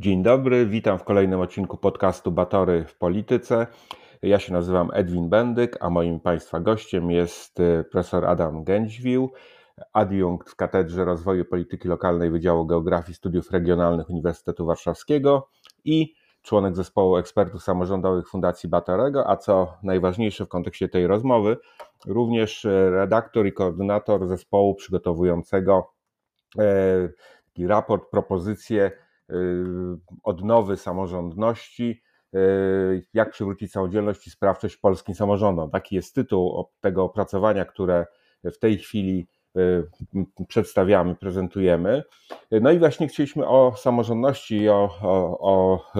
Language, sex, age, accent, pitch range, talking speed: Polish, male, 30-49, native, 90-105 Hz, 110 wpm